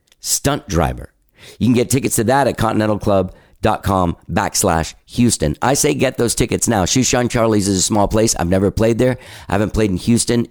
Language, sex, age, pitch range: English, male, 50-69, 90-120 Hz